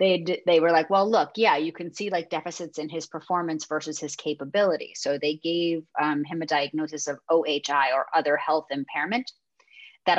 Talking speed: 195 wpm